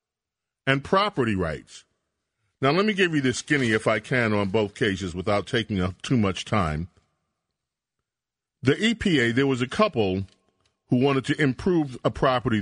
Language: English